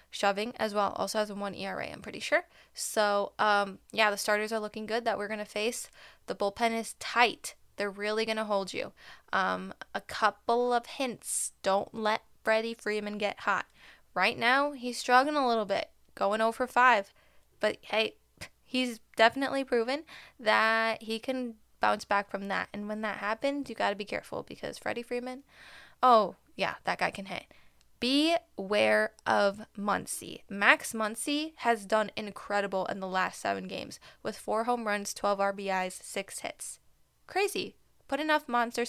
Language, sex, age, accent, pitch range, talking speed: English, female, 10-29, American, 195-235 Hz, 170 wpm